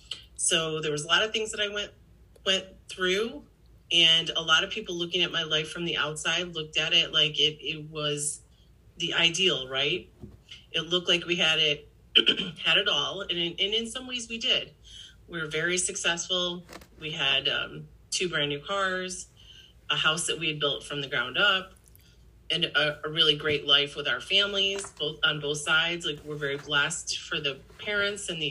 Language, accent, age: English, American, 30-49